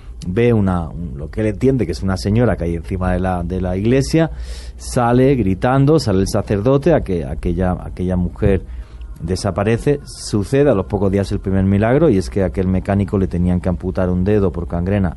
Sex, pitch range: male, 80-100 Hz